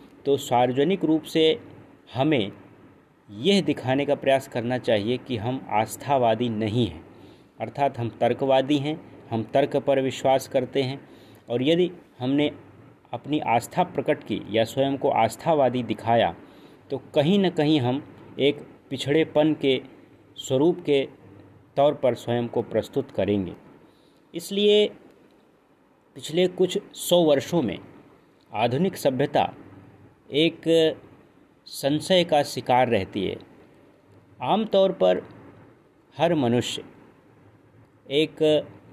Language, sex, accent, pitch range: Hindi, male, native, 120-150 Hz